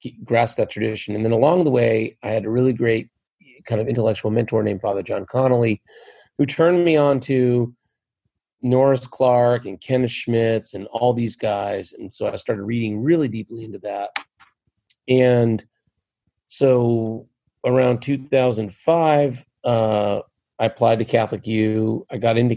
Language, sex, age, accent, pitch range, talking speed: English, male, 40-59, American, 110-125 Hz, 150 wpm